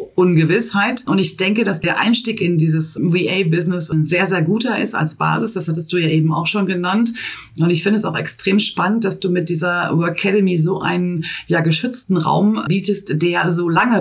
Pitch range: 160-200 Hz